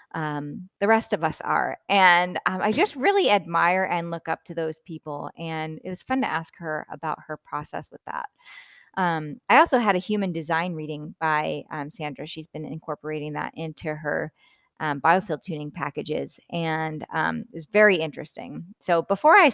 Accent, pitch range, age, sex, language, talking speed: American, 160-225 Hz, 20-39, female, English, 185 wpm